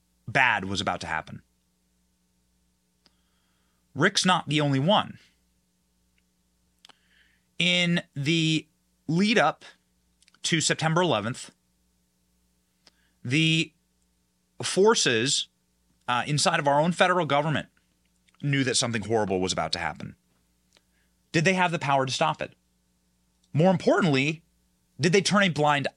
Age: 30-49